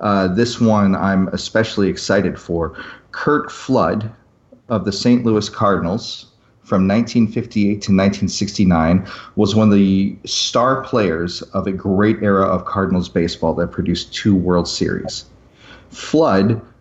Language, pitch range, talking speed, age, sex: English, 95-120 Hz, 130 wpm, 40-59, male